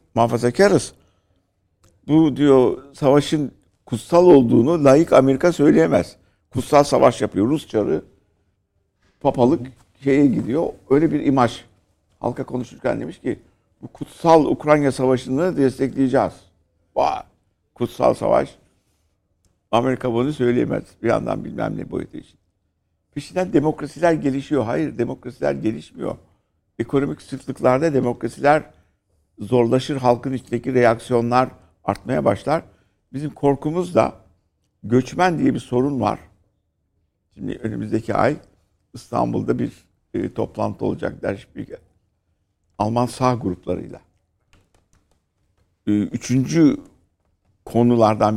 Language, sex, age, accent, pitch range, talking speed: Turkish, male, 60-79, native, 95-135 Hz, 100 wpm